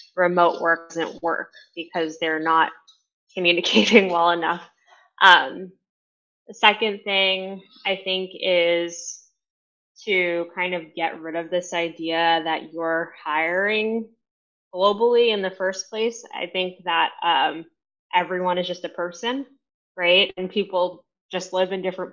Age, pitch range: 10-29, 165-195 Hz